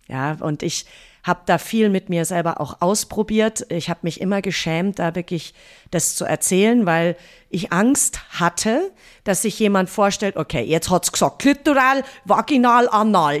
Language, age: German, 40-59